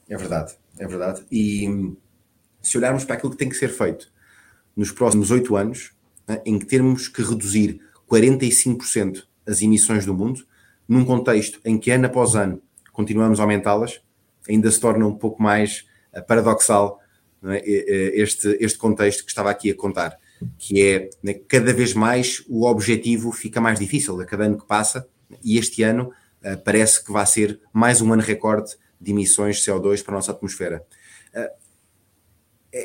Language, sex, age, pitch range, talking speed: Portuguese, male, 20-39, 105-130 Hz, 160 wpm